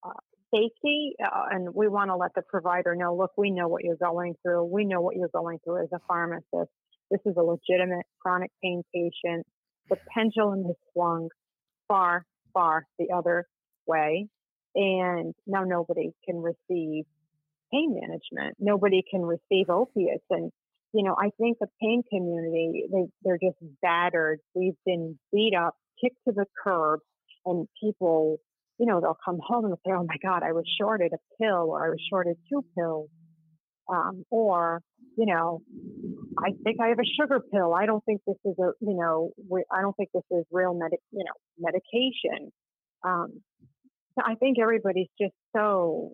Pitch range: 170-215 Hz